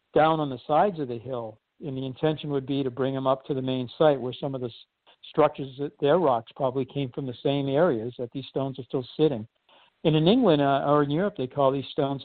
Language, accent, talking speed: English, American, 250 wpm